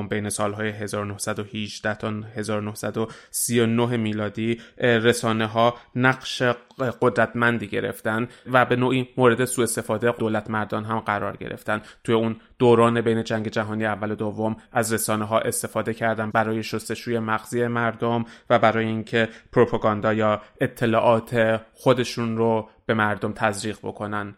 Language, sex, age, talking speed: Persian, male, 20-39, 130 wpm